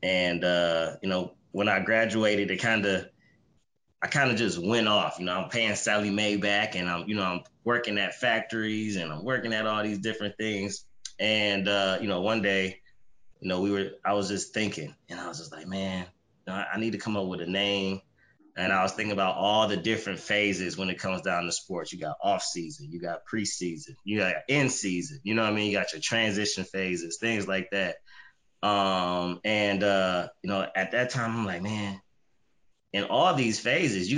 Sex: male